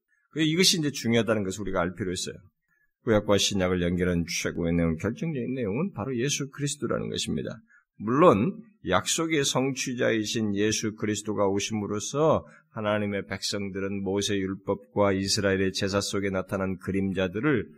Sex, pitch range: male, 95-155 Hz